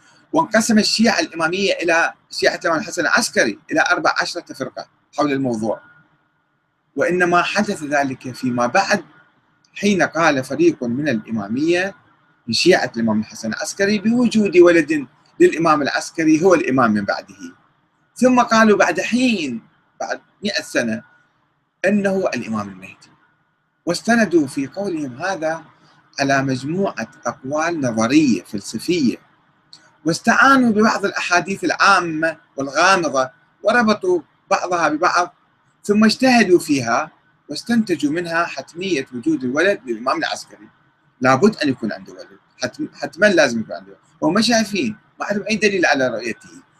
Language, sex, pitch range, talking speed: Arabic, male, 135-220 Hz, 115 wpm